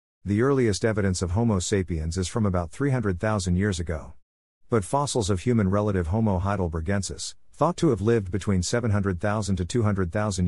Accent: American